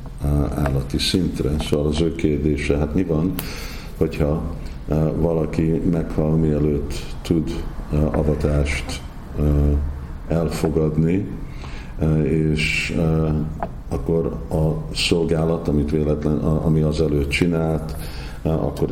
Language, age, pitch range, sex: Hungarian, 50-69, 70-80 Hz, male